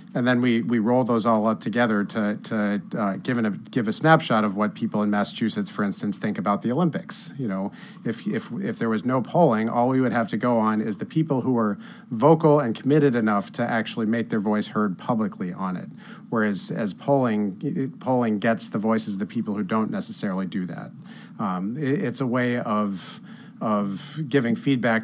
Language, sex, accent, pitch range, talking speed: English, male, American, 110-135 Hz, 205 wpm